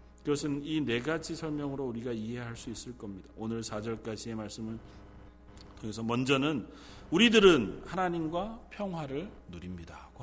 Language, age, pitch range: Korean, 40-59, 100-160 Hz